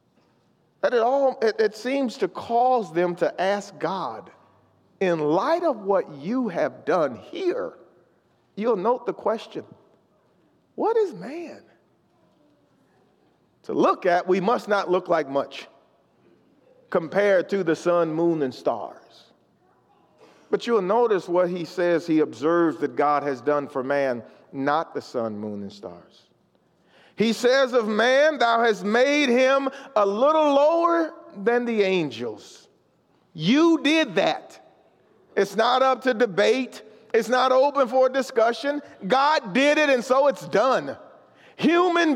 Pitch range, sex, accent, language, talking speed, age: 175-265 Hz, male, American, English, 135 wpm, 40-59